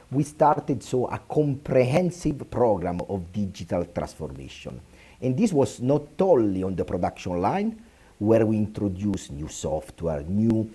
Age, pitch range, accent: 50-69, 95-130 Hz, Italian